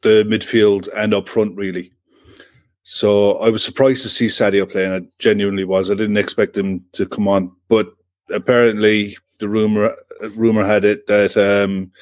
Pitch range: 100-120 Hz